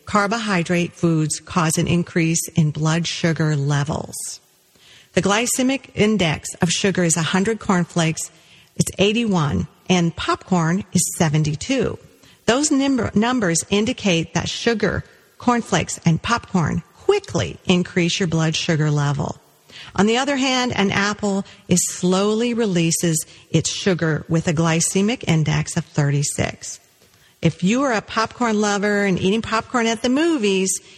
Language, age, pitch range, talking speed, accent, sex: English, 40-59, 165-220 Hz, 125 wpm, American, female